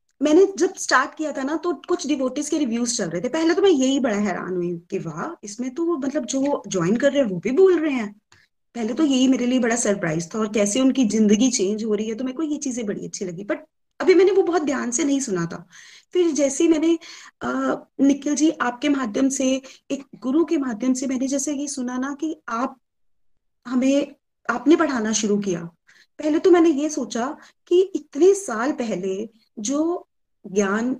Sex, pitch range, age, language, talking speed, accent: female, 215-295 Hz, 20-39, Hindi, 130 wpm, native